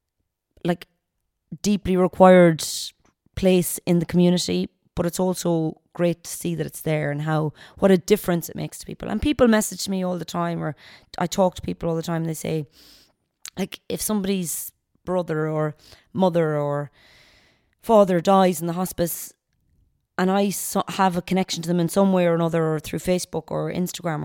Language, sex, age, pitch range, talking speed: English, female, 30-49, 150-180 Hz, 180 wpm